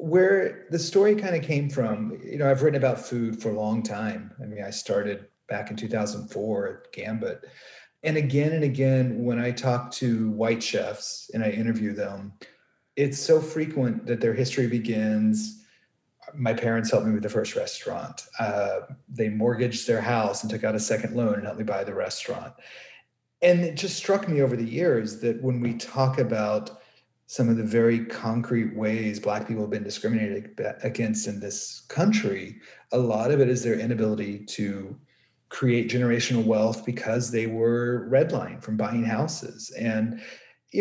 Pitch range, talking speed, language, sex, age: 110-145 Hz, 175 wpm, English, male, 40-59